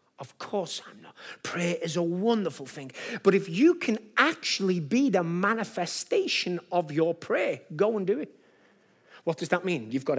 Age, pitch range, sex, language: 30-49, 165-255 Hz, male, English